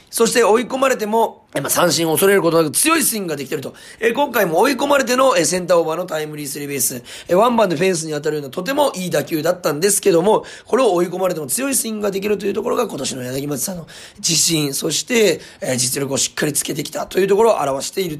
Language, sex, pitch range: Japanese, male, 145-210 Hz